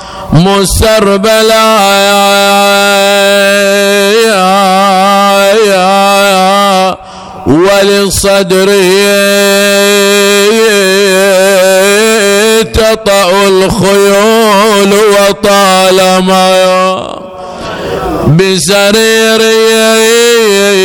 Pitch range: 190-220 Hz